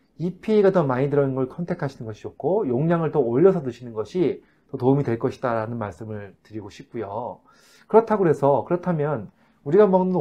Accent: native